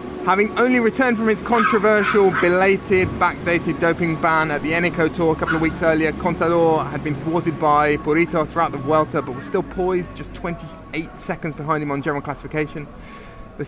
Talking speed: 180 wpm